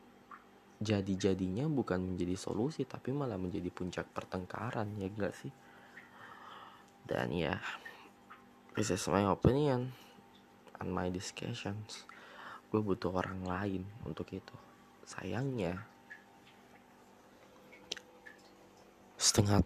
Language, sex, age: Indonesian, male, 20-39